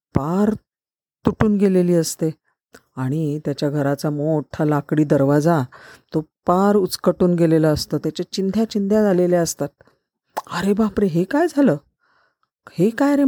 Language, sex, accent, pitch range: Marathi, female, native, 140-190 Hz